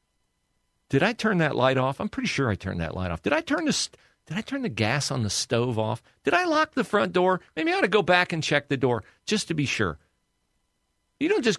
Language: English